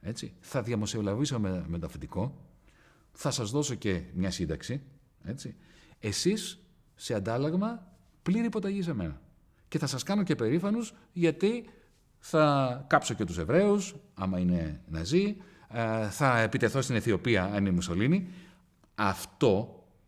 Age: 40-59